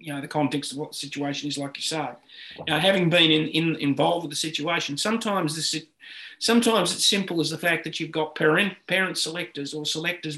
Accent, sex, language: Australian, male, English